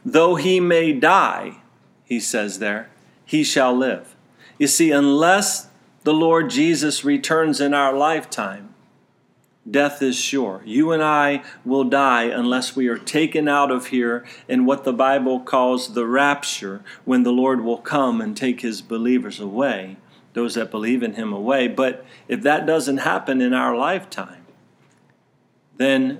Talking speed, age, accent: 155 wpm, 40-59, American